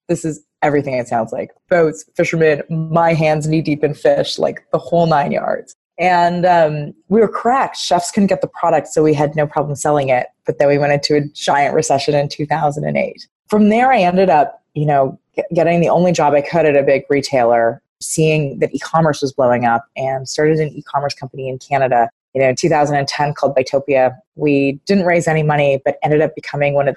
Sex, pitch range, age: female, 140-175 Hz, 20-39